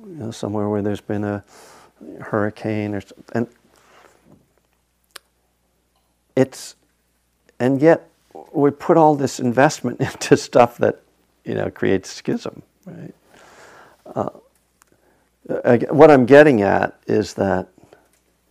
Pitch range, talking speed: 100-125 Hz, 105 wpm